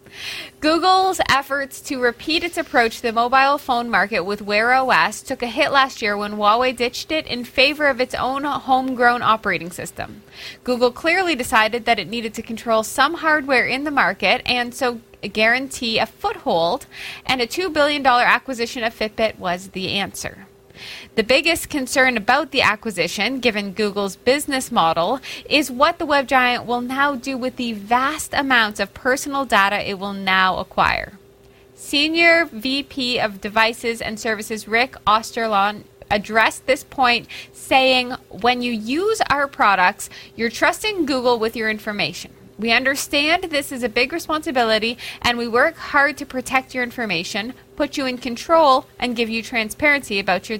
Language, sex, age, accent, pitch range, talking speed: English, female, 20-39, American, 220-280 Hz, 160 wpm